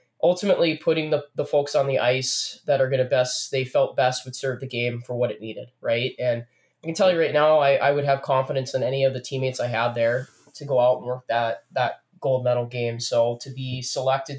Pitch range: 120-135 Hz